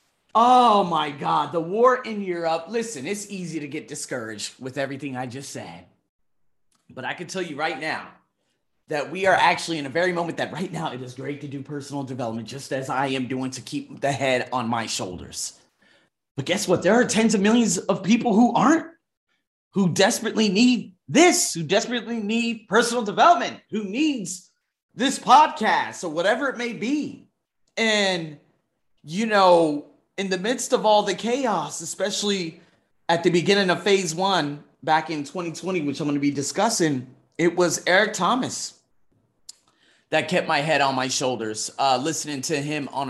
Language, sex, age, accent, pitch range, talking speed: English, male, 30-49, American, 145-205 Hz, 175 wpm